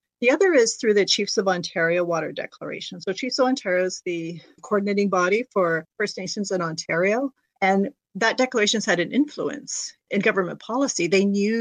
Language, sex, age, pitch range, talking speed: English, female, 40-59, 180-225 Hz, 180 wpm